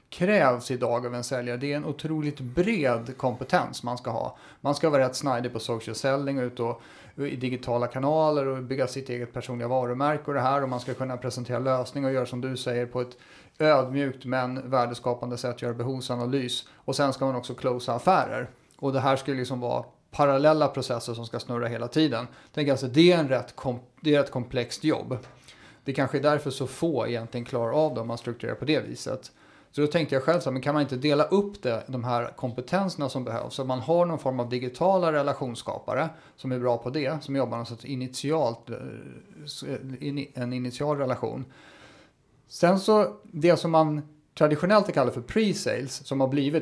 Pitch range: 125-150 Hz